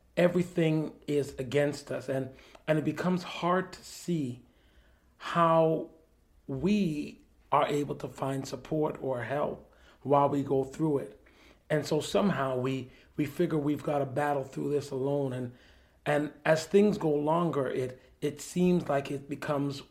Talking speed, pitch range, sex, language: 150 wpm, 130-155 Hz, male, English